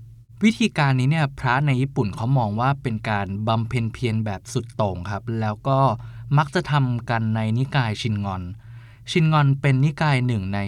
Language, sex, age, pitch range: Thai, male, 20-39, 110-135 Hz